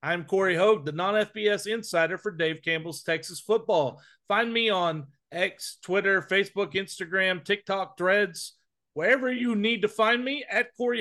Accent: American